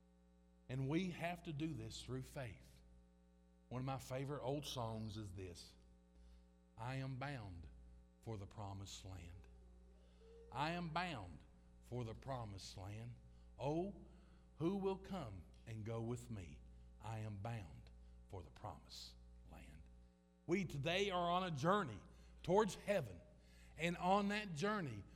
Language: English